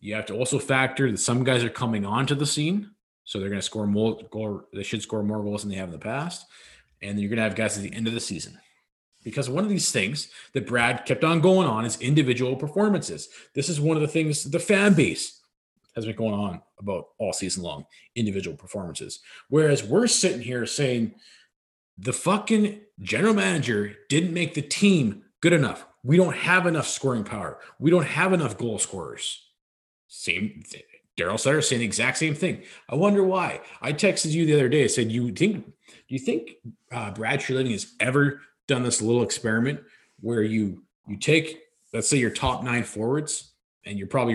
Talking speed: 205 wpm